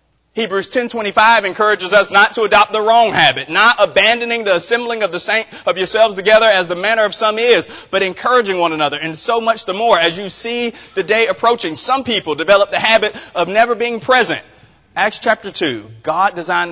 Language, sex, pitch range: English, male, 145-210 Hz